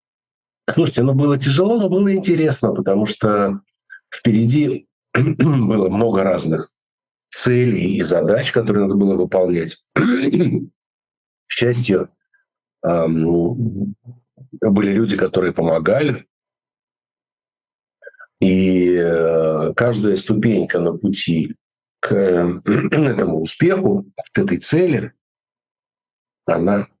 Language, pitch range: Russian, 90-140 Hz